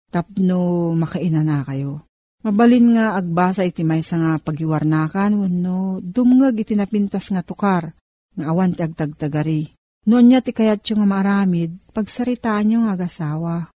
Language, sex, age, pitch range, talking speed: Filipino, female, 40-59, 165-205 Hz, 135 wpm